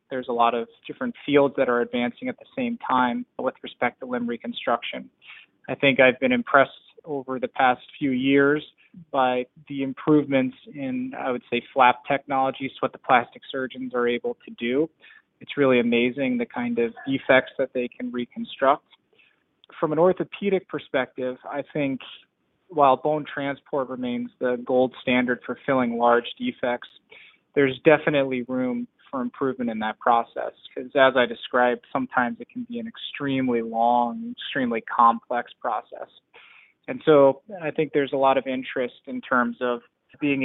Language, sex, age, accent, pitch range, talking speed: English, male, 20-39, American, 125-155 Hz, 160 wpm